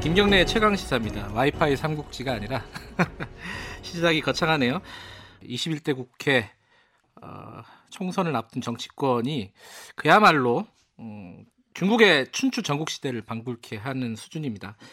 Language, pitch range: Korean, 130-190 Hz